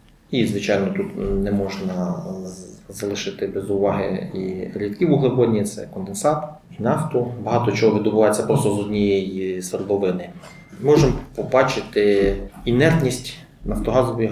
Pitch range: 100-130 Hz